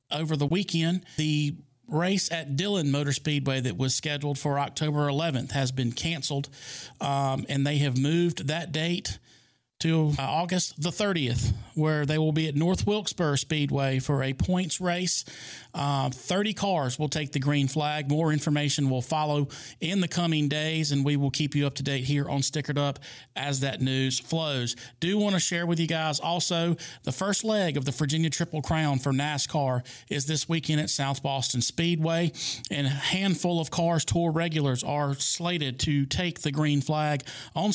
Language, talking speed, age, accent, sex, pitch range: English, 180 wpm, 40-59, American, male, 135-160 Hz